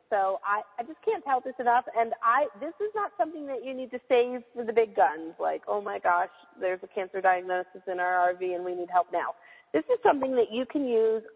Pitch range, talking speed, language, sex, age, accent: 200-255 Hz, 245 wpm, English, female, 40-59, American